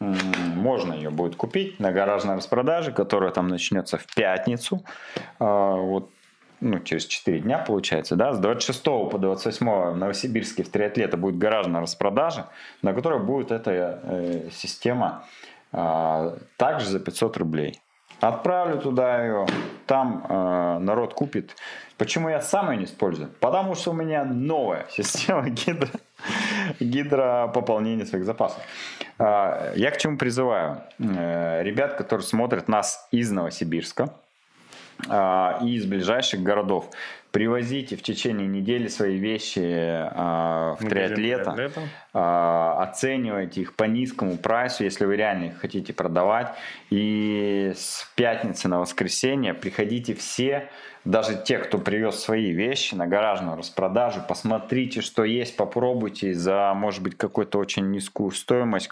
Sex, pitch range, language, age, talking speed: male, 90-120 Hz, Russian, 30-49, 125 wpm